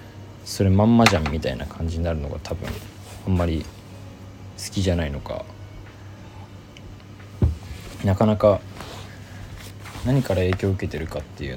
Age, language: 20-39, Japanese